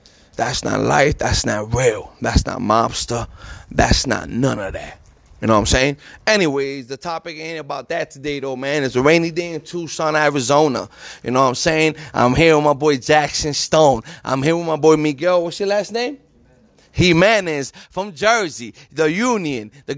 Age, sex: 30-49, male